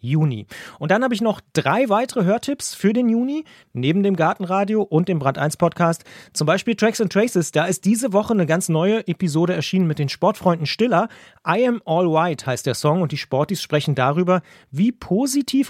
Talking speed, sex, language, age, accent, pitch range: 205 wpm, male, German, 30-49, German, 150-210 Hz